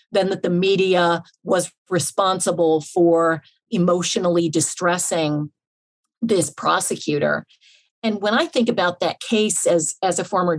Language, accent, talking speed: English, American, 125 wpm